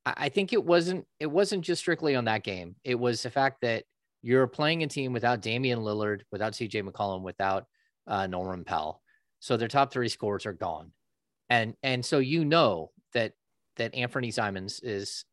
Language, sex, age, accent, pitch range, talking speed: English, male, 30-49, American, 110-140 Hz, 185 wpm